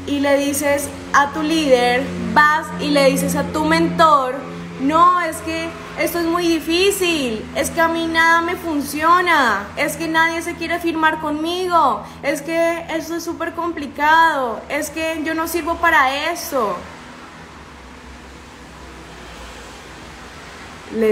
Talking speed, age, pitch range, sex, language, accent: 135 wpm, 20-39, 225-320 Hz, female, Spanish, Colombian